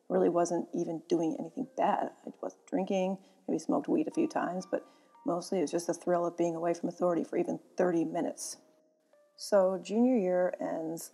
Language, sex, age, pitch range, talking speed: English, female, 30-49, 170-240 Hz, 190 wpm